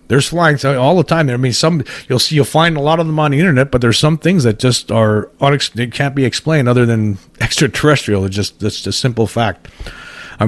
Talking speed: 245 wpm